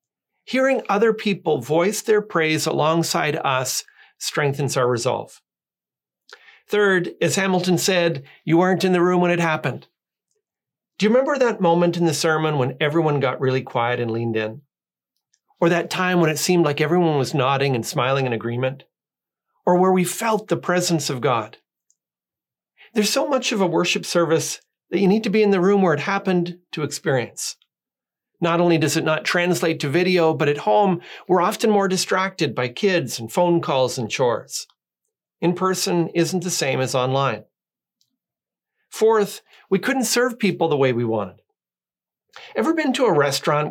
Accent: American